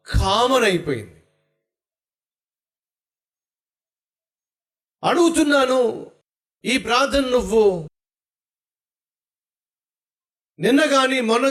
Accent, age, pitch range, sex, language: native, 50-69, 155-230 Hz, male, Telugu